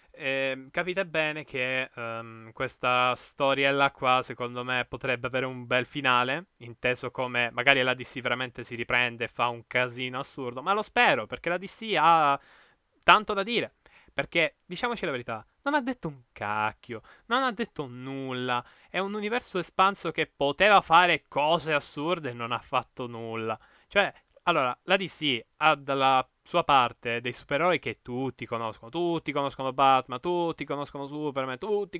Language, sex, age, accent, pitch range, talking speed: Italian, male, 10-29, native, 125-155 Hz, 160 wpm